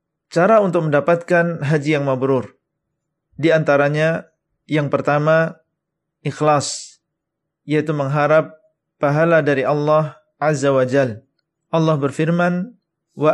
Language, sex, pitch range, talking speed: Indonesian, male, 145-165 Hz, 100 wpm